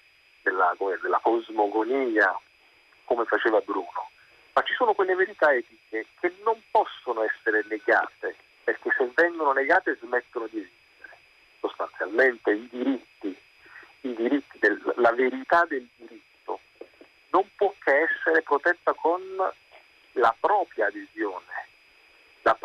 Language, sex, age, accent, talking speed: Italian, male, 50-69, native, 115 wpm